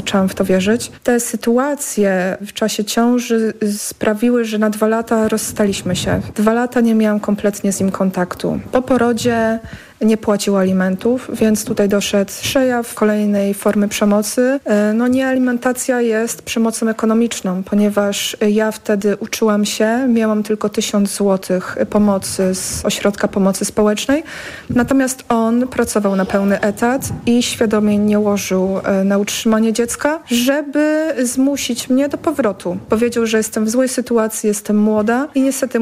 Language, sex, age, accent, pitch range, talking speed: Polish, female, 40-59, native, 200-230 Hz, 140 wpm